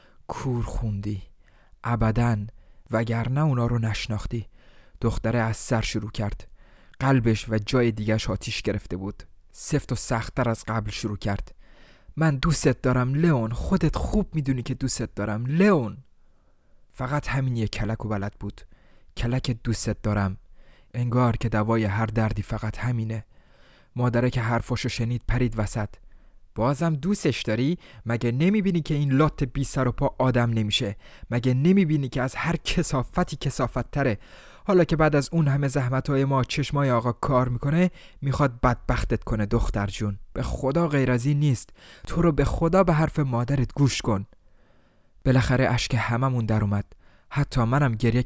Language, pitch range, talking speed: Persian, 110-135 Hz, 150 wpm